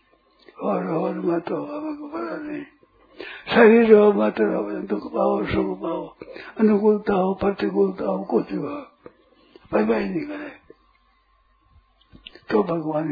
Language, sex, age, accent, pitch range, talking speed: Hindi, male, 60-79, native, 190-280 Hz, 105 wpm